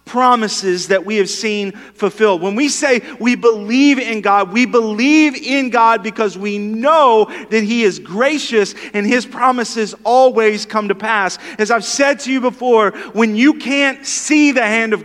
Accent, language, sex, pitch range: American, English, male, 180-270 Hz